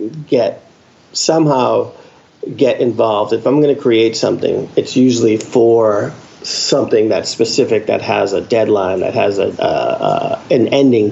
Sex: male